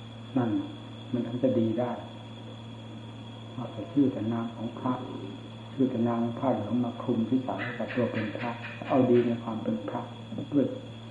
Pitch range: 115-120 Hz